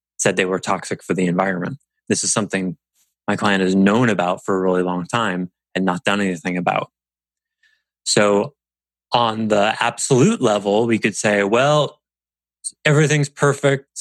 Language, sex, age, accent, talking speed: English, male, 20-39, American, 155 wpm